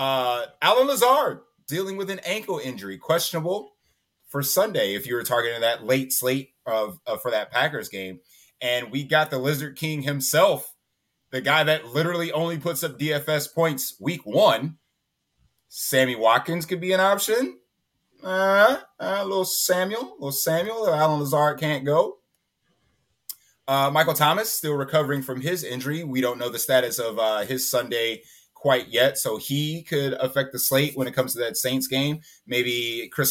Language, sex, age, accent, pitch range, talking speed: English, male, 30-49, American, 125-155 Hz, 170 wpm